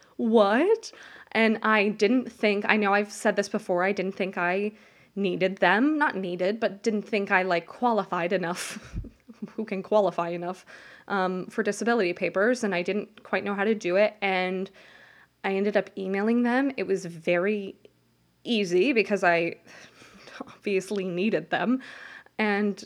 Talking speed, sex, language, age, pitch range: 155 wpm, female, English, 20-39, 180-215 Hz